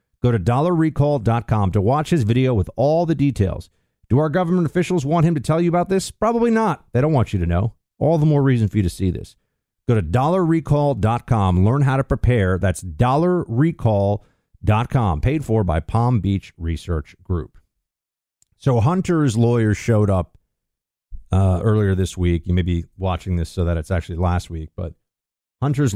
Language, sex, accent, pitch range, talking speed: English, male, American, 95-135 Hz, 180 wpm